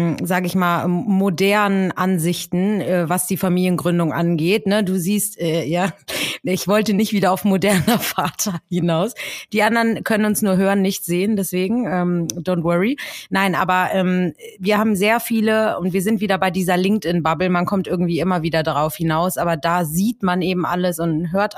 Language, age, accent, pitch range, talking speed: German, 30-49, German, 180-215 Hz, 165 wpm